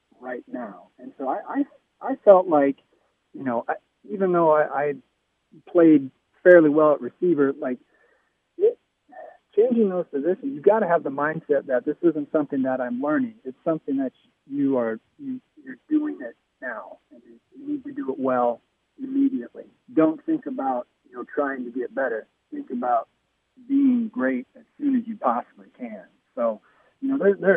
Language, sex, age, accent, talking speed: English, male, 40-59, American, 170 wpm